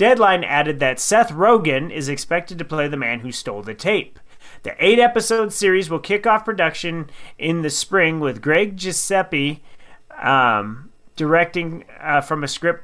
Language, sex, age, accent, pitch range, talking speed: English, male, 30-49, American, 135-180 Hz, 160 wpm